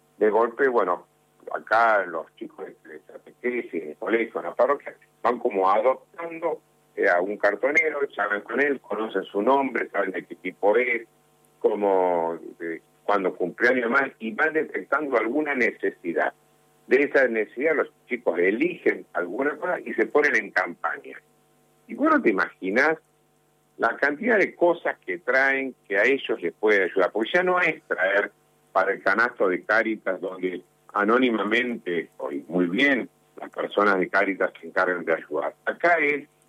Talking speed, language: 150 wpm, Spanish